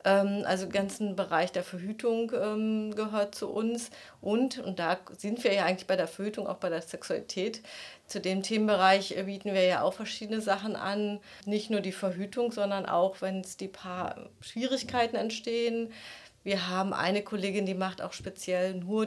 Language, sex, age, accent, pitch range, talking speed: German, female, 30-49, German, 190-220 Hz, 170 wpm